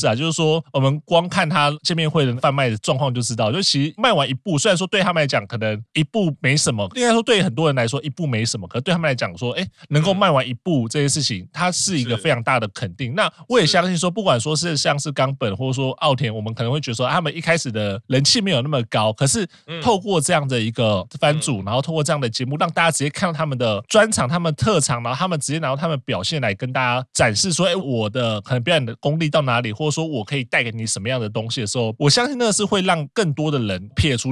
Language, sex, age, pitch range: Chinese, male, 20-39, 125-160 Hz